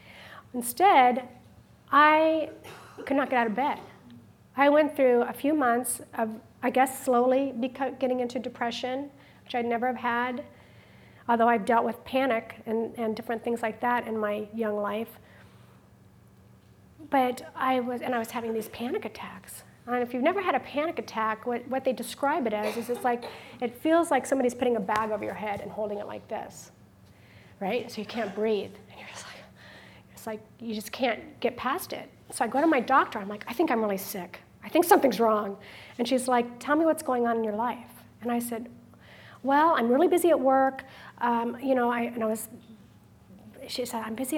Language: English